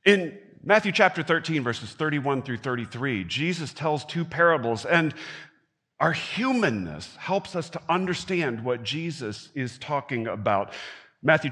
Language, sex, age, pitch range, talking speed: English, male, 40-59, 115-175 Hz, 130 wpm